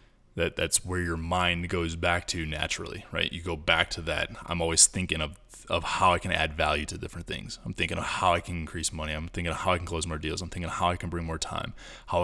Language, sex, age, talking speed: English, male, 20-39, 270 wpm